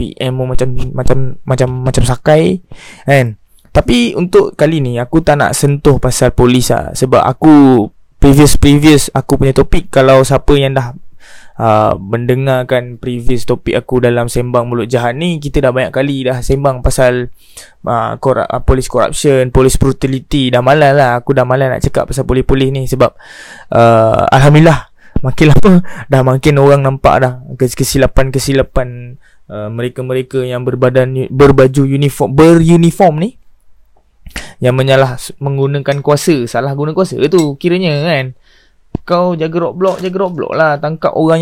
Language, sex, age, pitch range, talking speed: Malay, male, 20-39, 125-150 Hz, 150 wpm